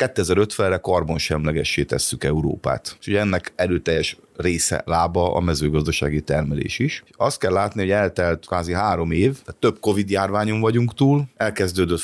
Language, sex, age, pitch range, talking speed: Hungarian, male, 30-49, 80-100 Hz, 145 wpm